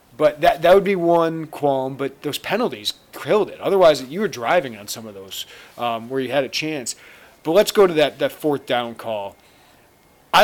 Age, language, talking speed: 30-49, English, 205 wpm